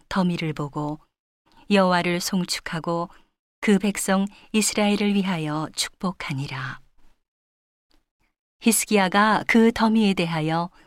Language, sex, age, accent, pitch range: Korean, female, 40-59, native, 170-205 Hz